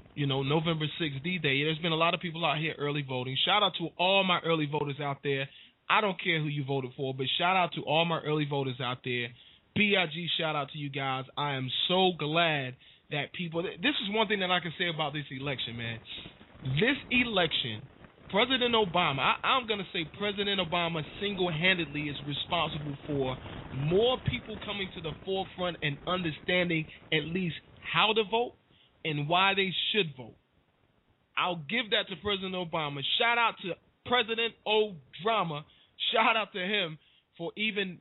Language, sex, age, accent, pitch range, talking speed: English, male, 20-39, American, 145-190 Hz, 180 wpm